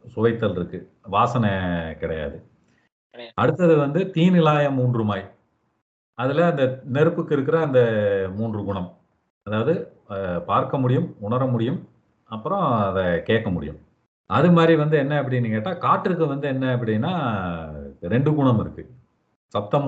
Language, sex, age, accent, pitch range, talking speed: Tamil, male, 40-59, native, 100-135 Hz, 120 wpm